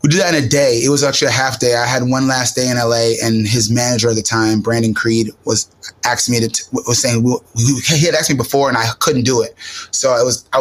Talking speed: 275 wpm